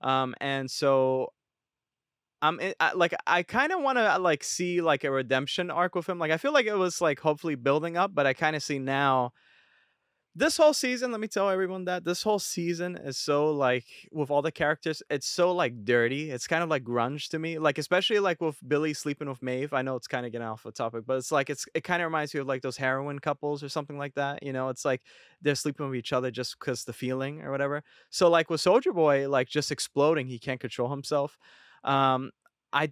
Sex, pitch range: male, 125-160 Hz